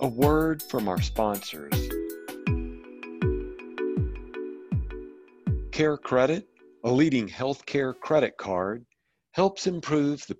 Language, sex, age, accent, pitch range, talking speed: English, male, 50-69, American, 105-145 Hz, 90 wpm